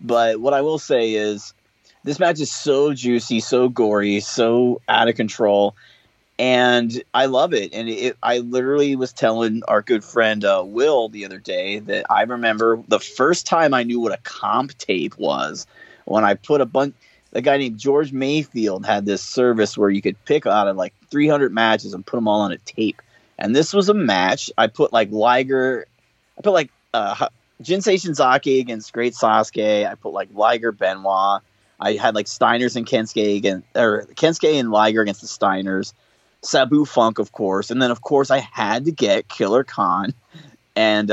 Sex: male